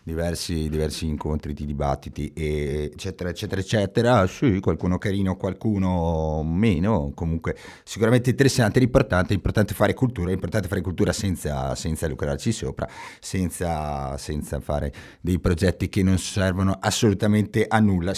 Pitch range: 80-100 Hz